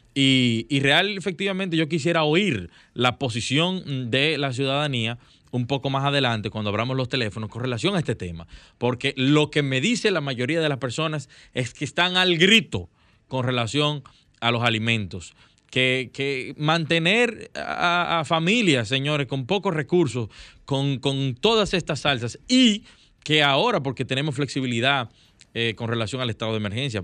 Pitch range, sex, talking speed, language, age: 115-145 Hz, male, 160 wpm, Spanish, 20-39